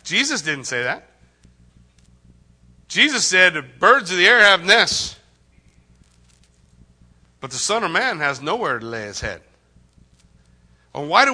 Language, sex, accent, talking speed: English, male, American, 130 wpm